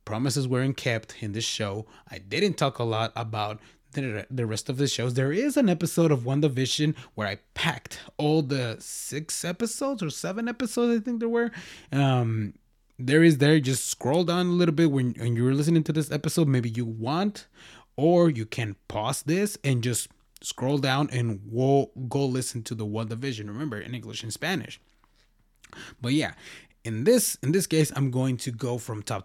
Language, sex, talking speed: English, male, 185 wpm